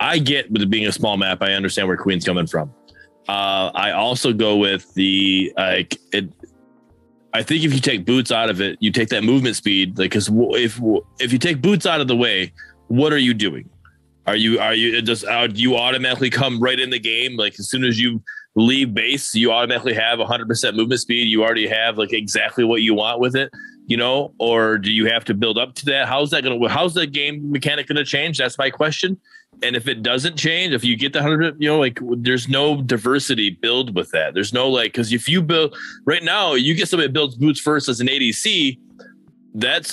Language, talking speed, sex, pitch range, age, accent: English, 230 wpm, male, 110-145 Hz, 20-39, American